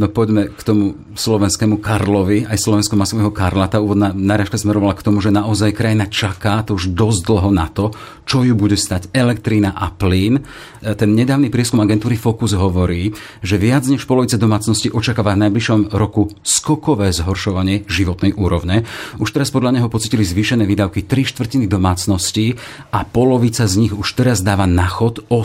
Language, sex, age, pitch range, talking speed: Slovak, male, 40-59, 95-115 Hz, 165 wpm